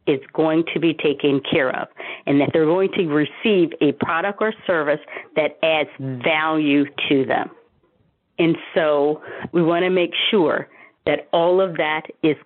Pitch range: 160-195 Hz